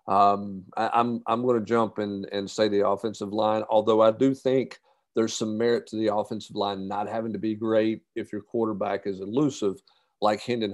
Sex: male